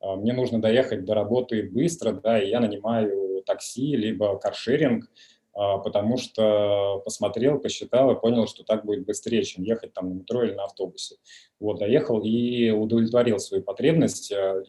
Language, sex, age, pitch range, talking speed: Russian, male, 20-39, 105-125 Hz, 150 wpm